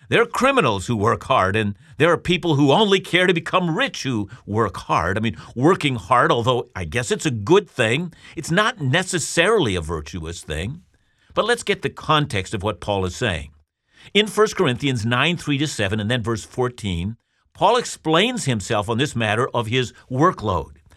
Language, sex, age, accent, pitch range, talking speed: English, male, 50-69, American, 115-170 Hz, 190 wpm